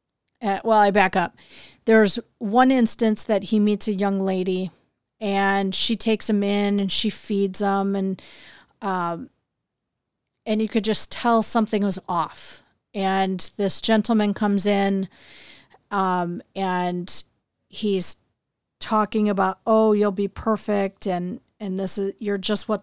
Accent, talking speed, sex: American, 140 wpm, female